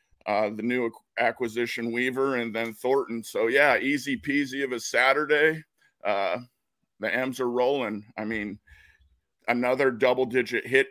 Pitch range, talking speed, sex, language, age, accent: 115-130 Hz, 135 wpm, male, English, 50-69, American